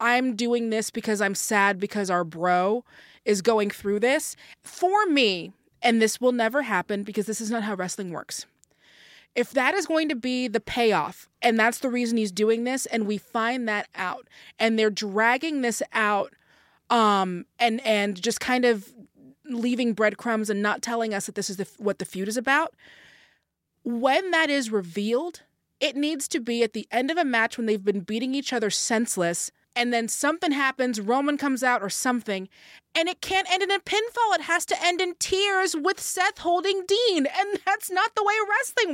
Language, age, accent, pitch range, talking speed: English, 20-39, American, 225-340 Hz, 195 wpm